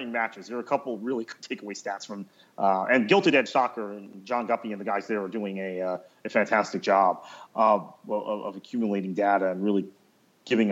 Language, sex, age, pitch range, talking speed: English, male, 40-59, 105-130 Hz, 205 wpm